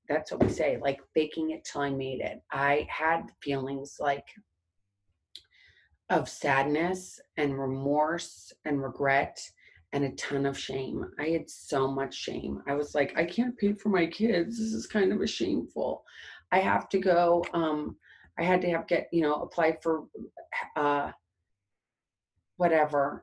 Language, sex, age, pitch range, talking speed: English, female, 30-49, 145-175 Hz, 160 wpm